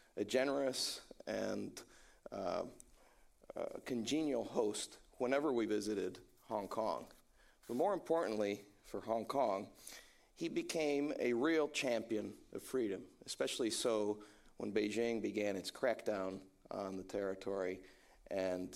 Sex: male